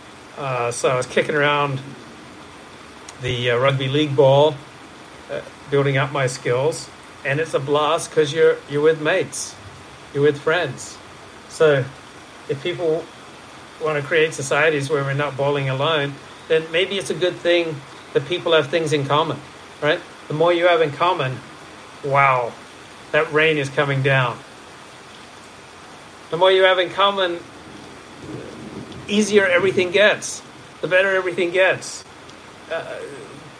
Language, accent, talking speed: English, American, 140 wpm